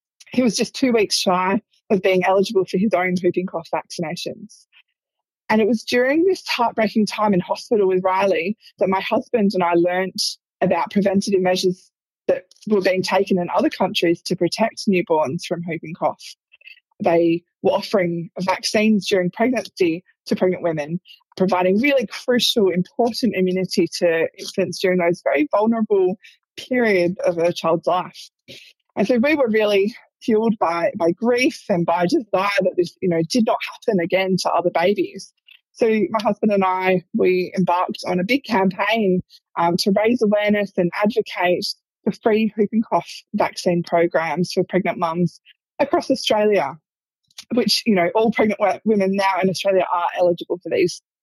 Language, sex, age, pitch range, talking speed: English, female, 20-39, 180-220 Hz, 160 wpm